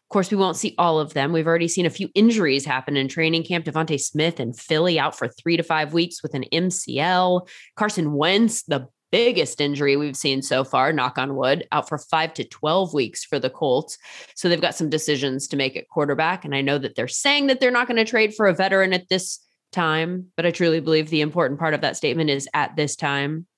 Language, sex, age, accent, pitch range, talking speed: English, female, 20-39, American, 135-180 Hz, 235 wpm